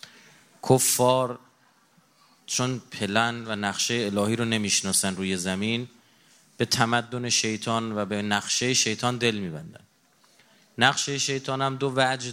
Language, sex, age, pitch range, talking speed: Persian, male, 30-49, 105-135 Hz, 115 wpm